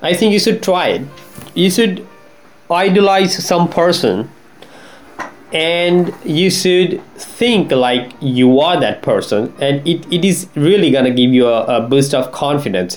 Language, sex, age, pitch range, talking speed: English, male, 20-39, 125-170 Hz, 155 wpm